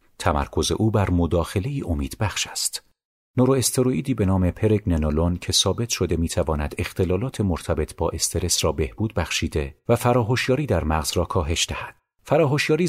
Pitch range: 80-110 Hz